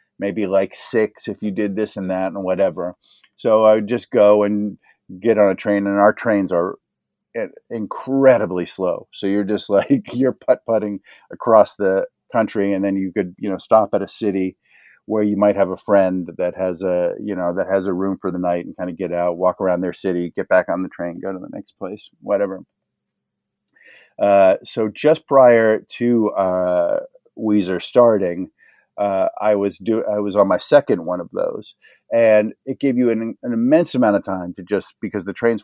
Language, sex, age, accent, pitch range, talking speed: English, male, 50-69, American, 95-110 Hz, 200 wpm